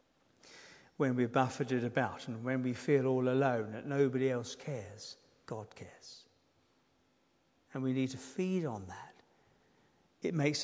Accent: British